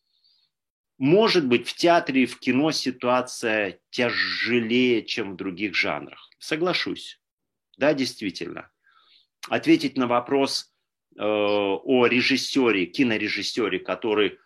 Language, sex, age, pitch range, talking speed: Russian, male, 40-59, 95-130 Hz, 100 wpm